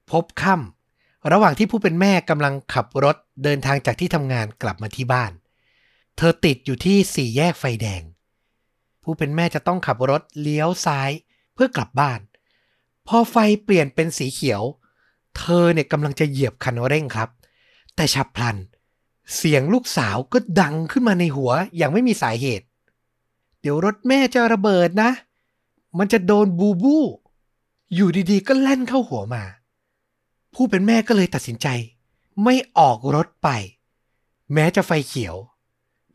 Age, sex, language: 60-79, male, Thai